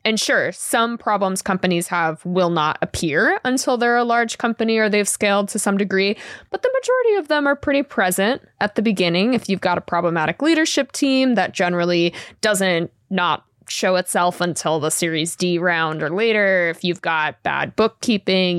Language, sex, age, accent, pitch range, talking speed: English, female, 20-39, American, 175-245 Hz, 180 wpm